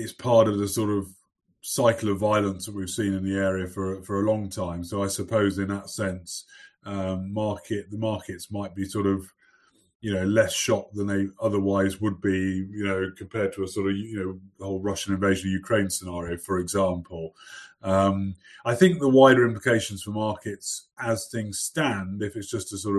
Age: 30-49